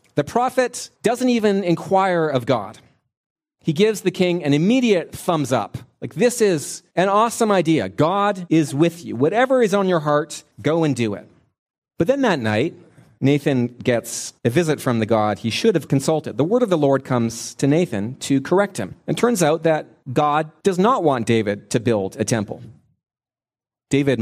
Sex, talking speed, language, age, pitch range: male, 185 wpm, English, 30-49, 120-185 Hz